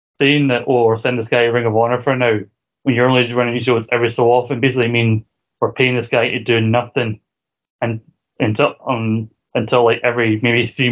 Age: 20-39